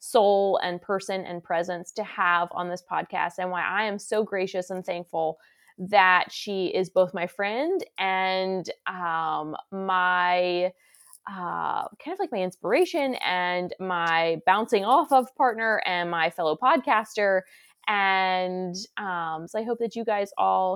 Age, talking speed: 20-39, 150 wpm